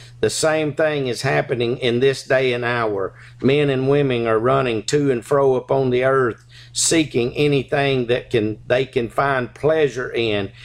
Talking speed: 170 wpm